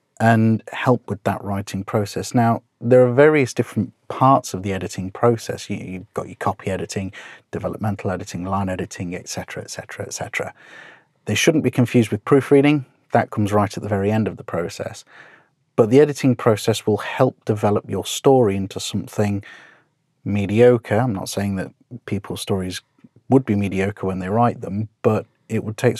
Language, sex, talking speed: English, male, 170 wpm